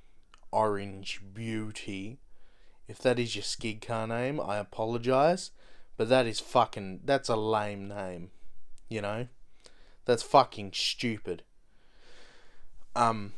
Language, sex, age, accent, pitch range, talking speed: English, male, 20-39, Australian, 110-150 Hz, 110 wpm